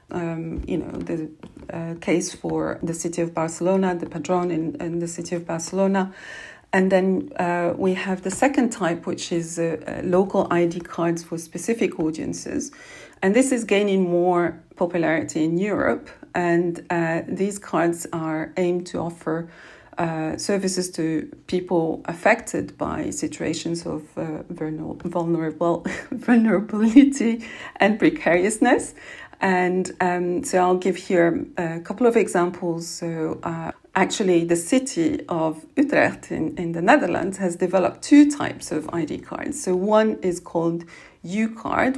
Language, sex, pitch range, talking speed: English, female, 170-195 Hz, 140 wpm